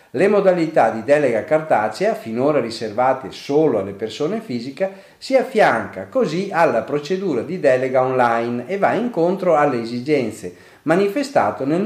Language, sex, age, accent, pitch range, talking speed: Italian, male, 40-59, native, 110-155 Hz, 130 wpm